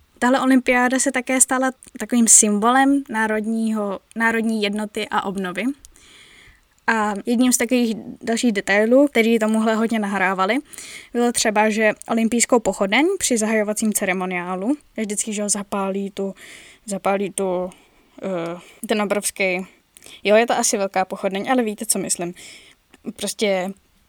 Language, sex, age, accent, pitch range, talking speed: Czech, female, 10-29, native, 205-245 Hz, 125 wpm